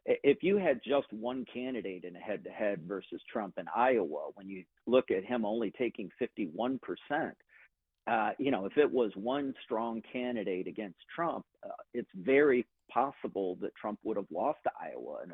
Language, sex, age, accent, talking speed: English, male, 50-69, American, 180 wpm